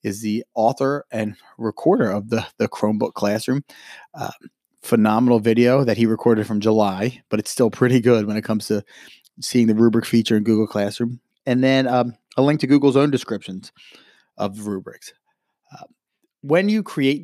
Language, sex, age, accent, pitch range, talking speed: English, male, 30-49, American, 115-145 Hz, 170 wpm